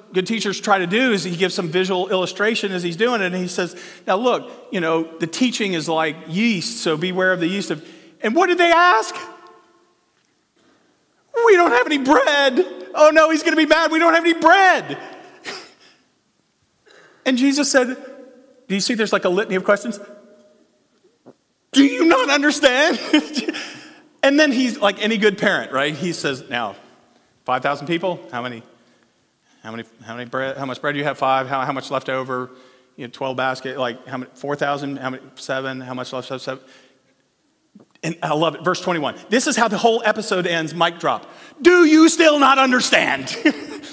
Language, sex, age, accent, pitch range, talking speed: English, male, 40-59, American, 165-265 Hz, 190 wpm